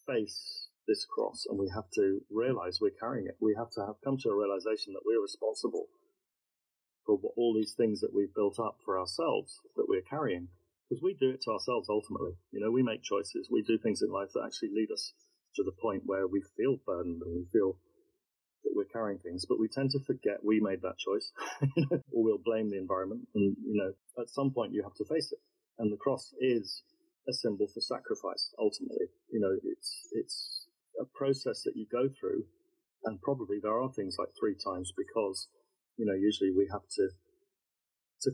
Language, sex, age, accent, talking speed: English, male, 30-49, British, 205 wpm